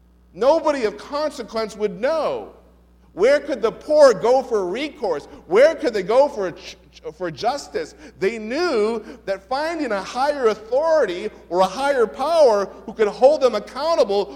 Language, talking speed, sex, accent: English, 145 wpm, male, American